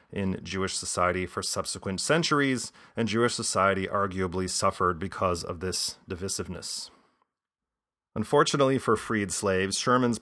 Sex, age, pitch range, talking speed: male, 30-49, 95-120 Hz, 115 wpm